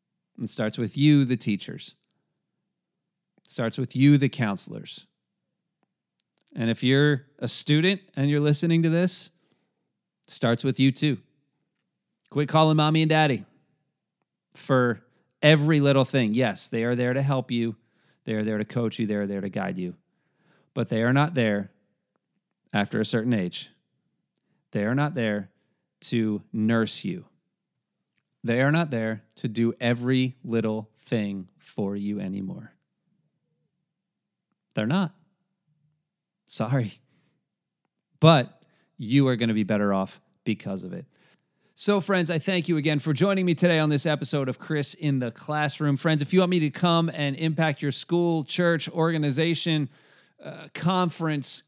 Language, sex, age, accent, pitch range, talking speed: English, male, 30-49, American, 120-165 Hz, 150 wpm